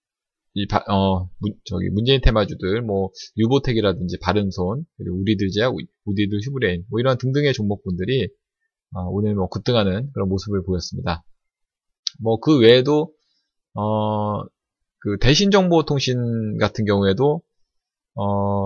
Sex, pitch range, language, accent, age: male, 100-135 Hz, Korean, native, 20-39